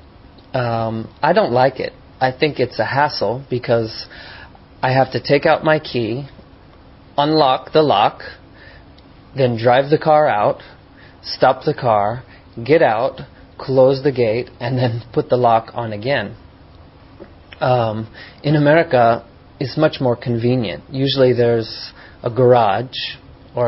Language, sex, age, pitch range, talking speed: English, male, 30-49, 115-135 Hz, 135 wpm